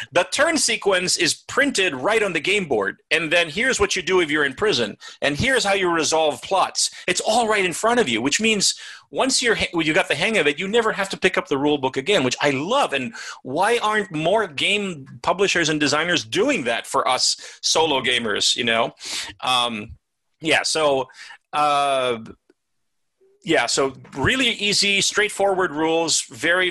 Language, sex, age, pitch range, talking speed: English, male, 40-59, 130-195 Hz, 190 wpm